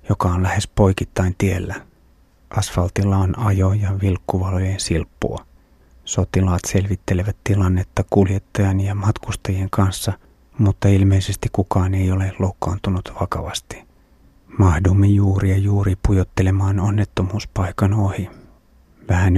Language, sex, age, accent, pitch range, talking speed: Finnish, male, 30-49, native, 90-100 Hz, 100 wpm